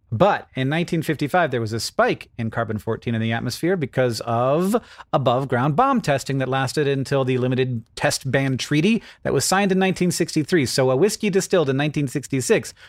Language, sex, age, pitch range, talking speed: English, male, 40-59, 125-165 Hz, 170 wpm